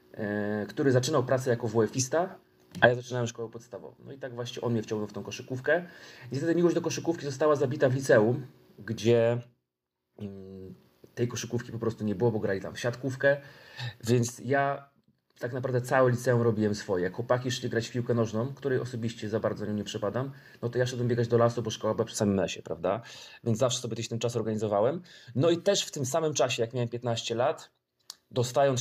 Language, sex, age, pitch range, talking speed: Polish, male, 30-49, 110-135 Hz, 200 wpm